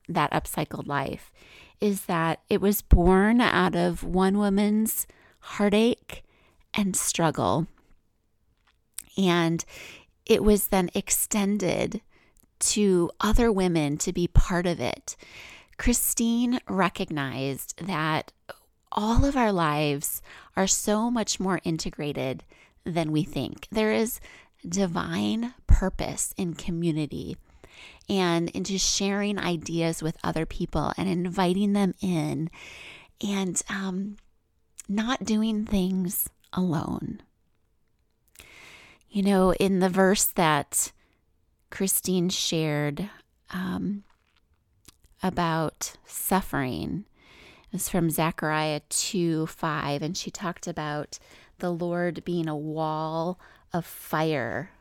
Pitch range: 160-200 Hz